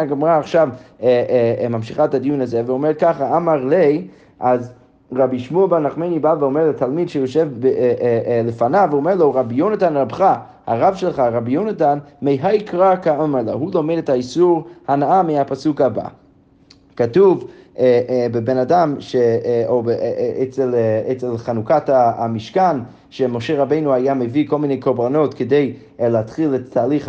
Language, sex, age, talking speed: Hebrew, male, 30-49, 130 wpm